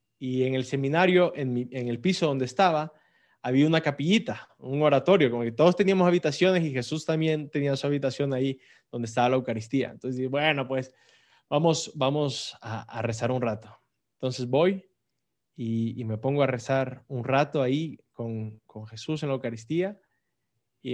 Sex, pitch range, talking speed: male, 125-155 Hz, 170 wpm